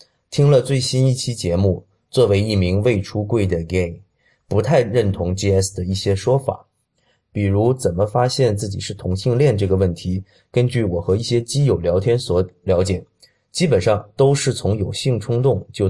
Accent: native